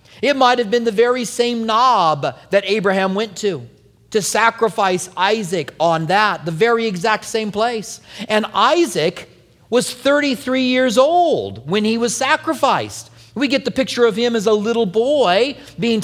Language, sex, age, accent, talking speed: English, male, 40-59, American, 160 wpm